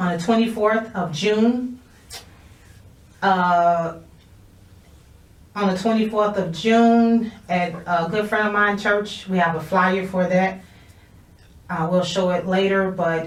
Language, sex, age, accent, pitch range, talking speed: English, female, 30-49, American, 165-210 Hz, 140 wpm